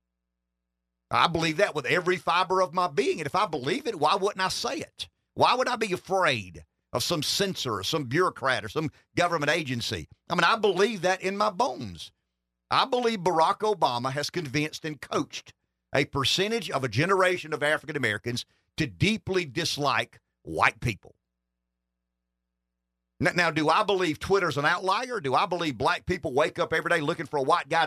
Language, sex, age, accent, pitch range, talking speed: English, male, 50-69, American, 110-180 Hz, 180 wpm